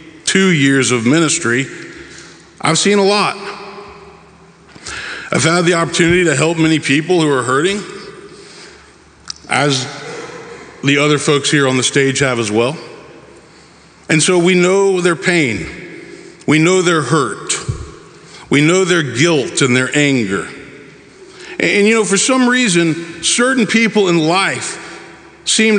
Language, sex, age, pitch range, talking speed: English, male, 50-69, 145-185 Hz, 135 wpm